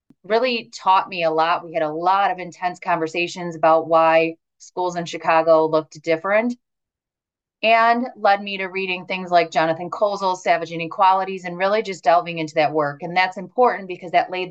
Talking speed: 180 wpm